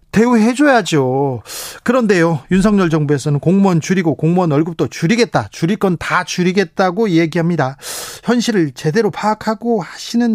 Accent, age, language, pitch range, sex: native, 40-59, Korean, 155-210 Hz, male